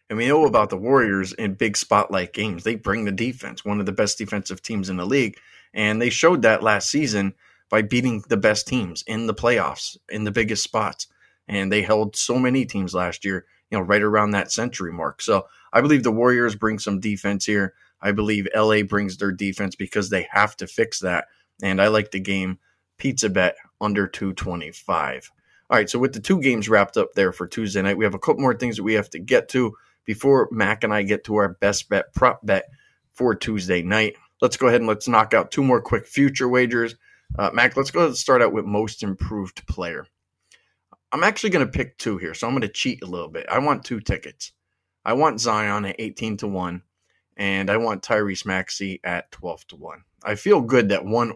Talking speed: 220 wpm